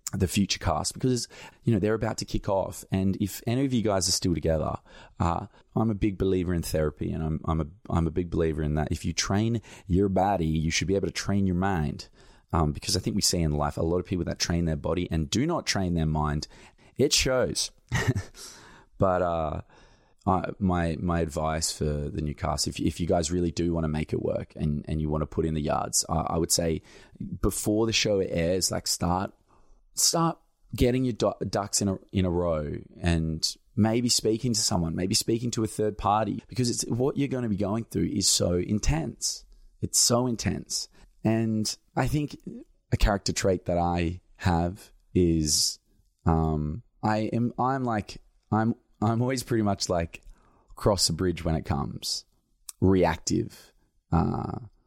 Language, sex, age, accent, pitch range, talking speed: English, male, 20-39, Australian, 80-110 Hz, 195 wpm